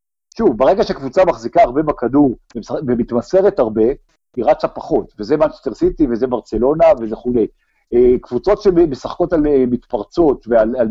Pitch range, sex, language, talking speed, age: 120-180 Hz, male, Hebrew, 125 wpm, 50-69